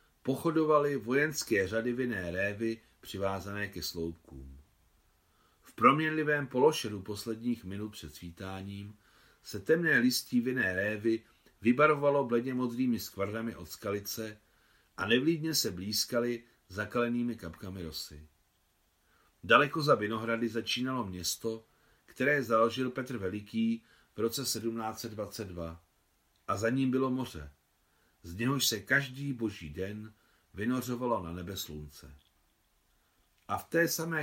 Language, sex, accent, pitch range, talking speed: Czech, male, native, 95-120 Hz, 110 wpm